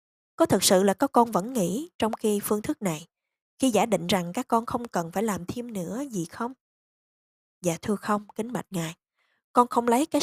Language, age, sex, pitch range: Vietnamese, 20-39, female, 175-240 Hz